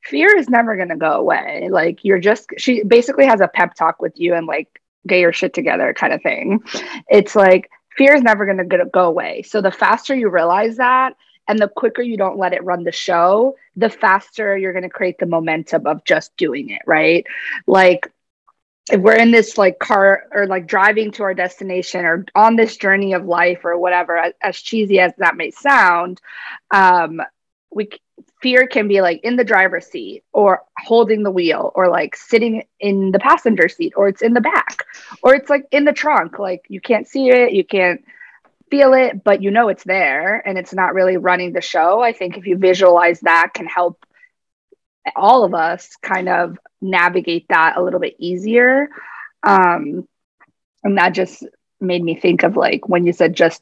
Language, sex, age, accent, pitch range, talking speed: English, female, 20-39, American, 180-230 Hz, 200 wpm